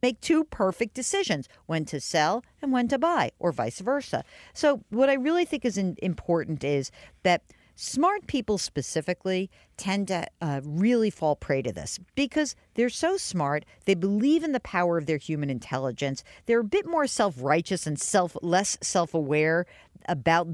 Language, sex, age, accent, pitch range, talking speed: English, female, 50-69, American, 155-215 Hz, 165 wpm